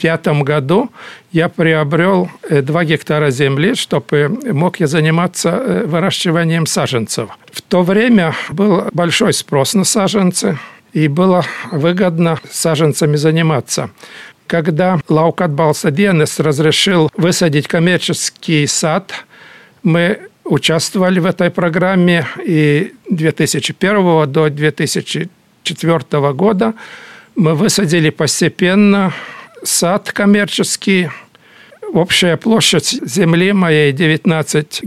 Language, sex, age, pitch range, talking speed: Russian, male, 60-79, 155-185 Hz, 90 wpm